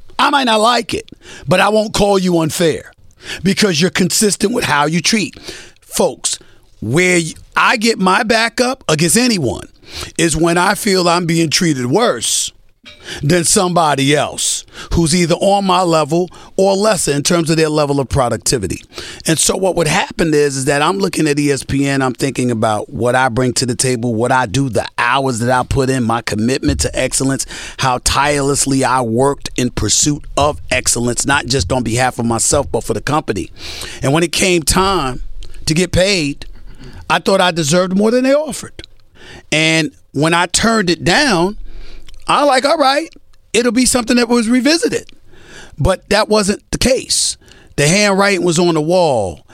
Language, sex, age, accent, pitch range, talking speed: English, male, 40-59, American, 125-185 Hz, 175 wpm